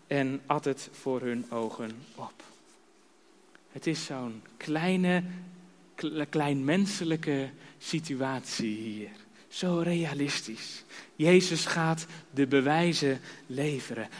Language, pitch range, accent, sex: Dutch, 145-230 Hz, Dutch, male